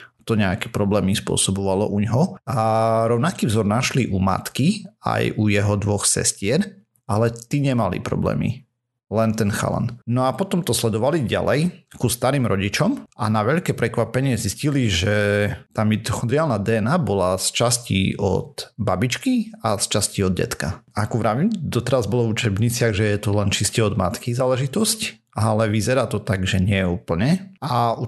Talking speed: 160 wpm